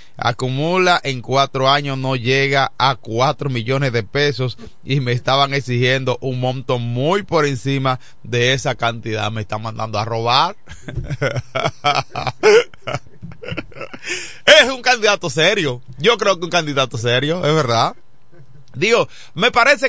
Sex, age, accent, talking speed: male, 30-49, Venezuelan, 130 wpm